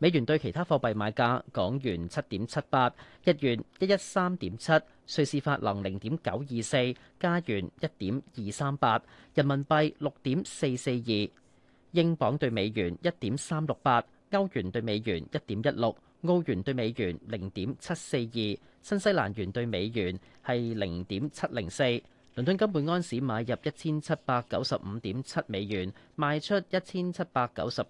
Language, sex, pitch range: Chinese, male, 110-155 Hz